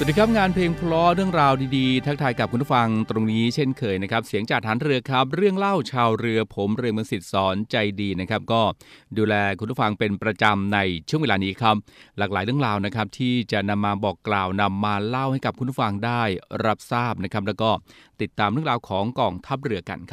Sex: male